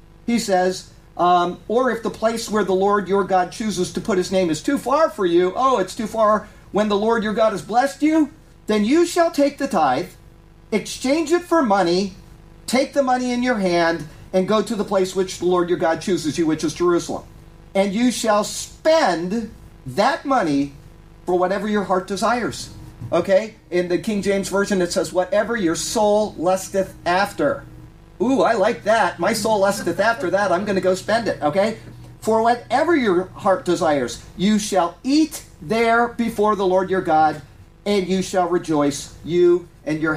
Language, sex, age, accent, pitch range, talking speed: English, male, 40-59, American, 165-215 Hz, 190 wpm